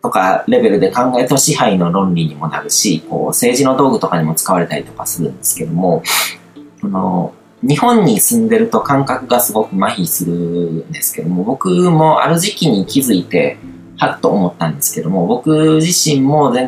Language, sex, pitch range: Japanese, male, 110-180 Hz